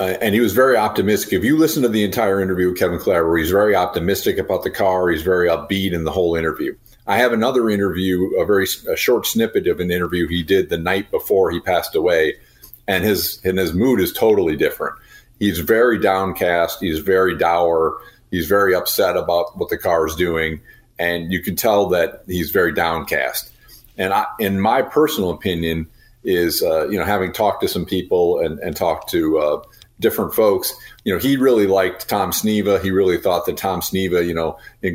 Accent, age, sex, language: American, 40-59, male, English